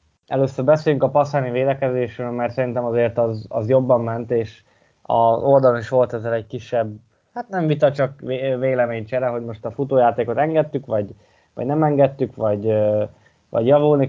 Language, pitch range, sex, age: Hungarian, 115-130 Hz, male, 20-39